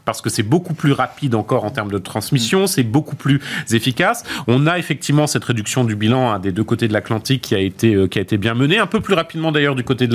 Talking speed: 265 wpm